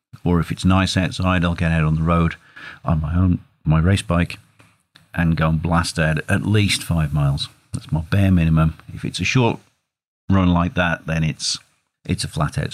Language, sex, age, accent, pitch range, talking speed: English, male, 50-69, British, 80-115 Hz, 205 wpm